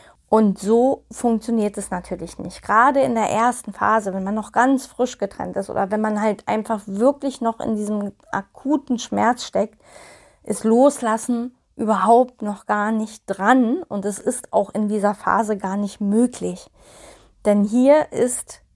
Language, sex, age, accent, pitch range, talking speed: German, female, 20-39, German, 200-240 Hz, 160 wpm